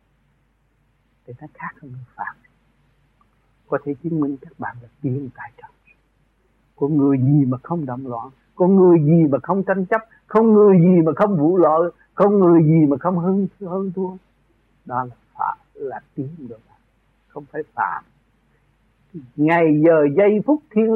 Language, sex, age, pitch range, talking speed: Vietnamese, male, 60-79, 145-205 Hz, 160 wpm